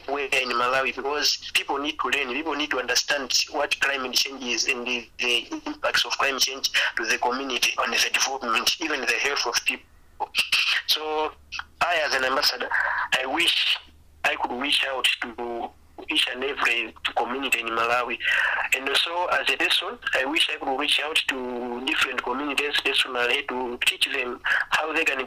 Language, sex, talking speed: English, male, 170 wpm